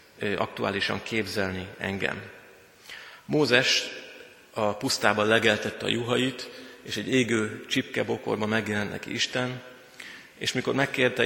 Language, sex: Hungarian, male